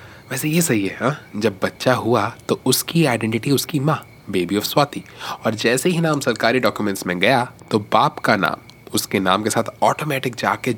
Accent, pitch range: native, 105-130 Hz